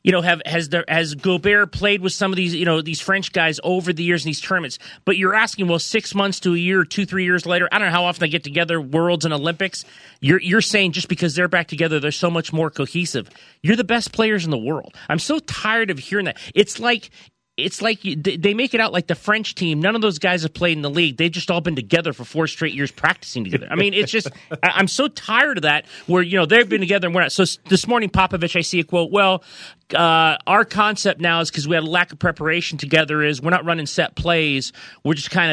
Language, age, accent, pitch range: English, 30-49, American, 150-190 Hz